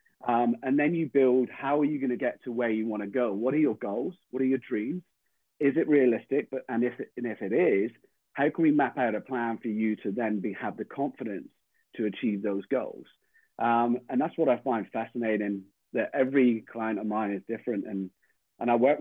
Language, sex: English, male